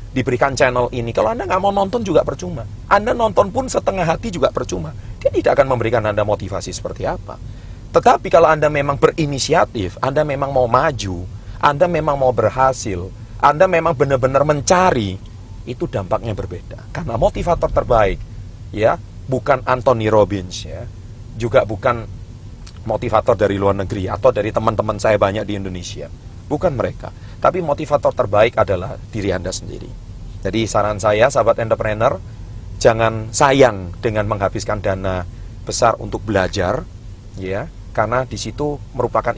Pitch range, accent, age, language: 100-120 Hz, native, 40-59, Indonesian